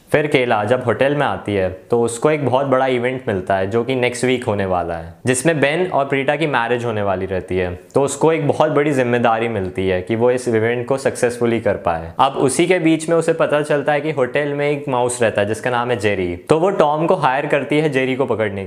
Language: Hindi